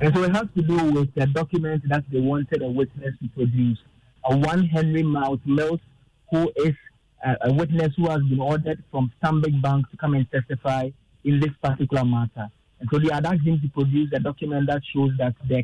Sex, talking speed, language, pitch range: male, 210 wpm, English, 130-155 Hz